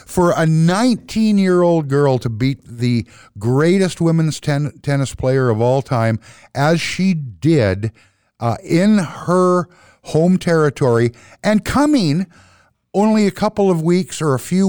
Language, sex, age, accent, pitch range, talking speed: English, male, 50-69, American, 125-170 Hz, 135 wpm